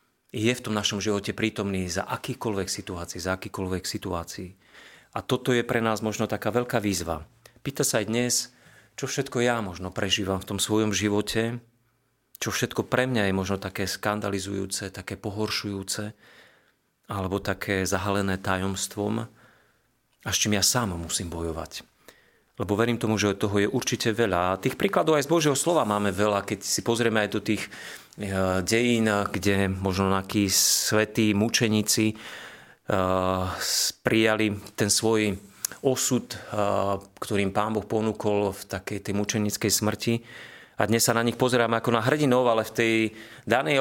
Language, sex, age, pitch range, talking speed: Slovak, male, 40-59, 100-115 Hz, 155 wpm